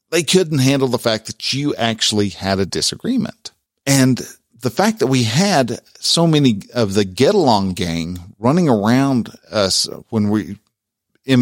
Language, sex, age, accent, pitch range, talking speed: English, male, 50-69, American, 105-130 Hz, 160 wpm